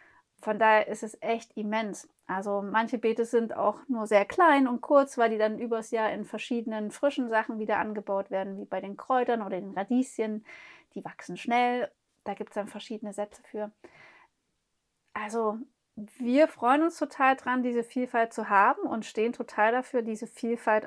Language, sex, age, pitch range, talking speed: German, female, 30-49, 220-270 Hz, 175 wpm